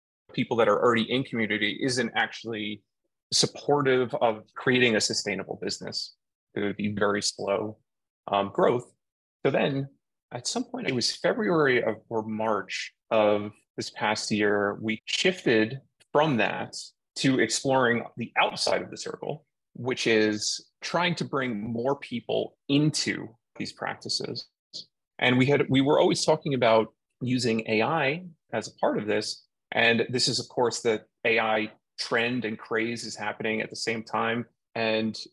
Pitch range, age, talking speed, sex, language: 110-135 Hz, 30-49, 150 wpm, male, English